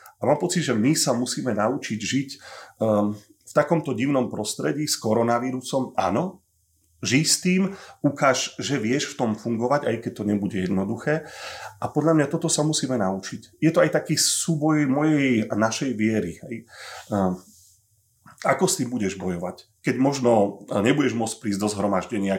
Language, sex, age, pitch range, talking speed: Slovak, male, 30-49, 105-140 Hz, 165 wpm